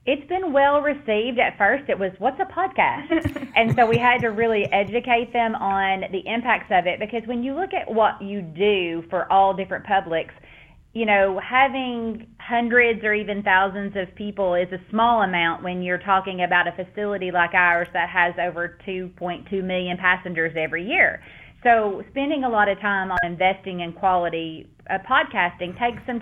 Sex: female